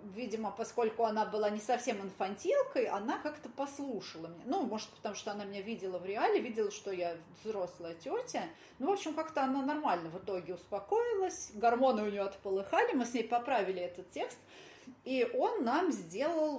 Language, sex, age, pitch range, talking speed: Russian, female, 30-49, 200-275 Hz, 175 wpm